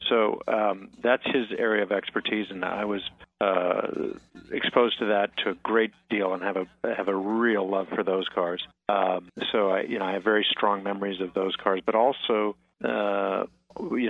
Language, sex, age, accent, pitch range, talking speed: English, male, 50-69, American, 95-105 Hz, 190 wpm